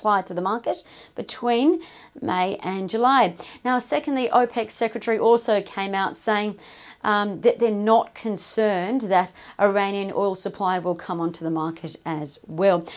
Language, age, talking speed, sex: English, 40-59, 145 wpm, female